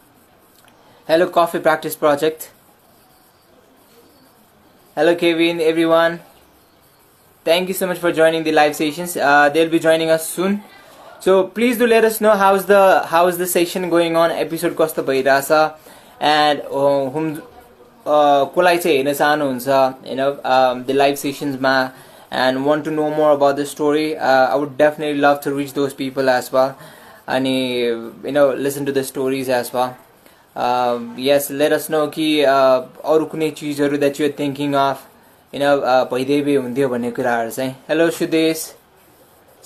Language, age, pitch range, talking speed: English, 20-39, 135-165 Hz, 155 wpm